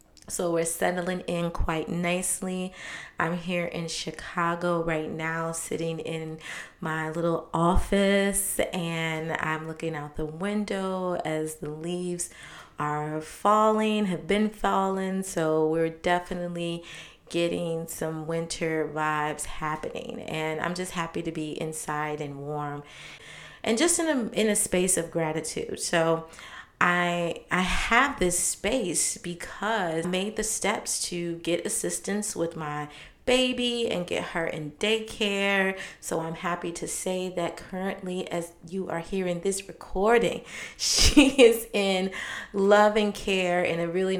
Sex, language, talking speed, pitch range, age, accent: female, English, 135 wpm, 160-185 Hz, 30-49, American